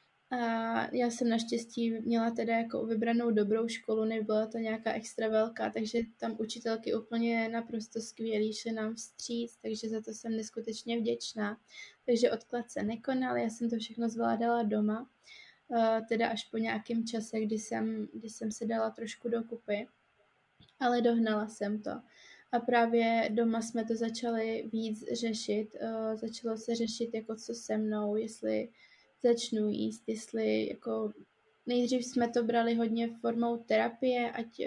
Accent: native